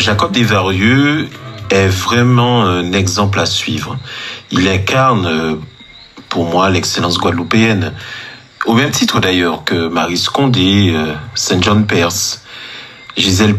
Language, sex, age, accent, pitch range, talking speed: French, male, 40-59, French, 95-125 Hz, 105 wpm